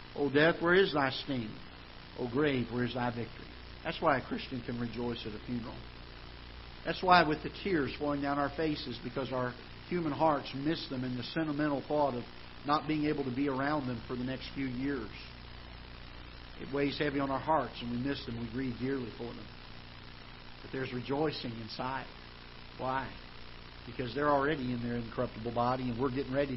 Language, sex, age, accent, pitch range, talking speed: English, male, 50-69, American, 110-145 Hz, 190 wpm